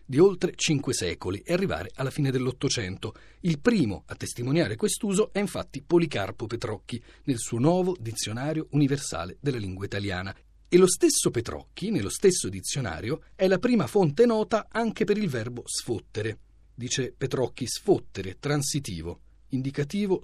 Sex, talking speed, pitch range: male, 140 wpm, 110-180 Hz